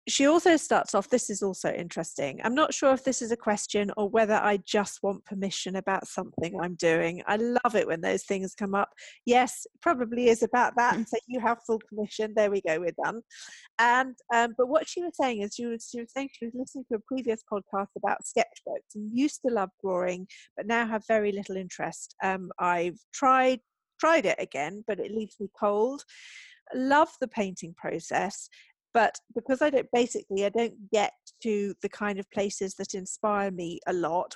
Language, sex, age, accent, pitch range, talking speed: English, female, 40-59, British, 195-240 Hz, 200 wpm